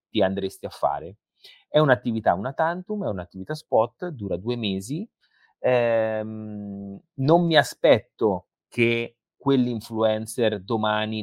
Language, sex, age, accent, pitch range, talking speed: Italian, male, 30-49, native, 105-145 Hz, 110 wpm